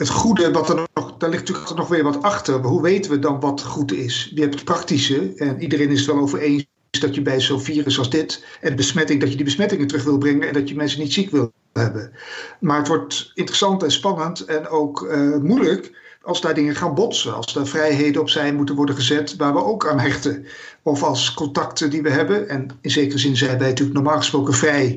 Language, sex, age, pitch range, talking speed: Dutch, male, 60-79, 145-170 Hz, 240 wpm